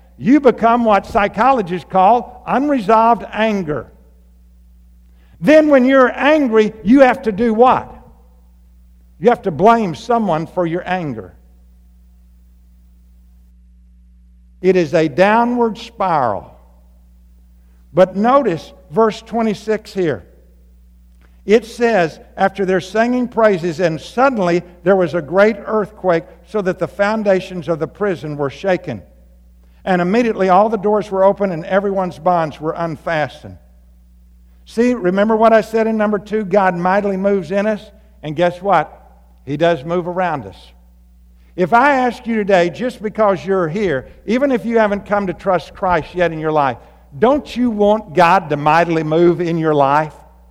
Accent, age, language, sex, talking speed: American, 60-79, English, male, 145 wpm